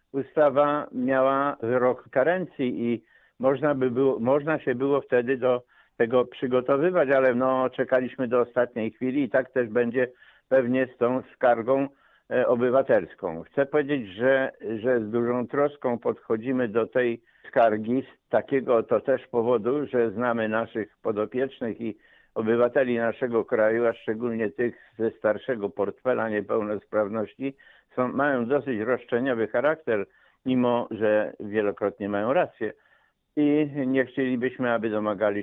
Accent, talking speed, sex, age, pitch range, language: native, 120 wpm, male, 60-79, 110-130 Hz, Polish